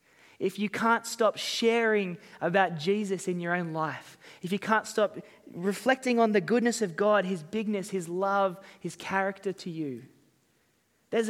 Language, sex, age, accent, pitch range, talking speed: English, male, 20-39, Australian, 160-205 Hz, 160 wpm